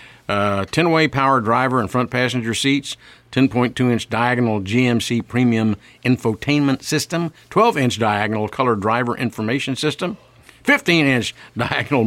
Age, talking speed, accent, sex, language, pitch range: 50-69, 125 wpm, American, male, English, 110-135 Hz